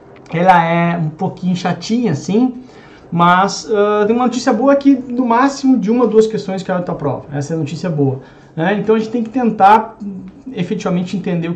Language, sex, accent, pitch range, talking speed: Portuguese, male, Brazilian, 170-220 Hz, 190 wpm